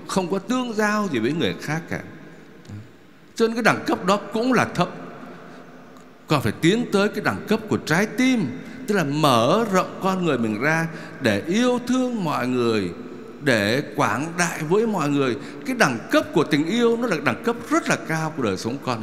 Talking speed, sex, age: 200 wpm, male, 60-79